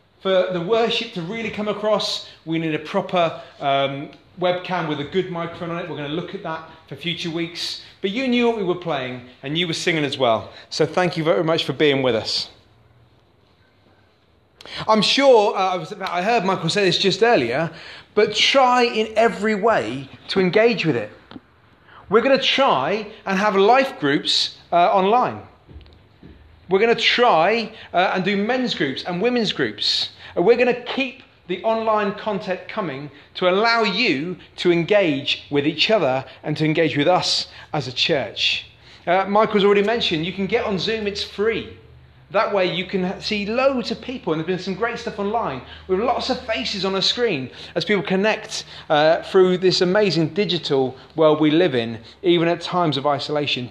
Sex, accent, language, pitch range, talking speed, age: male, British, English, 155-215 Hz, 185 wpm, 30-49